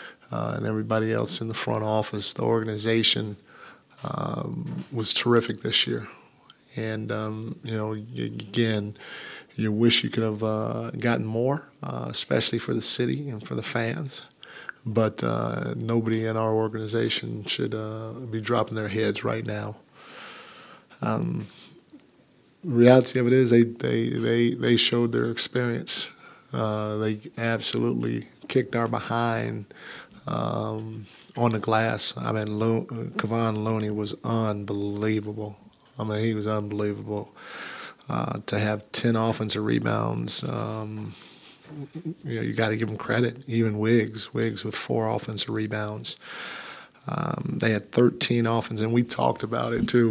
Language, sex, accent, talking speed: English, male, American, 140 wpm